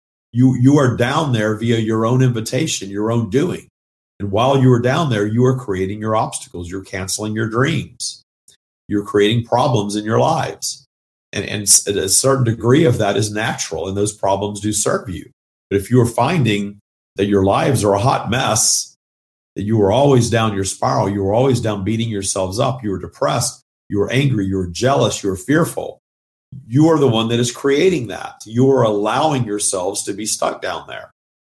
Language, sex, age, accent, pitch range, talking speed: English, male, 50-69, American, 100-125 Hz, 195 wpm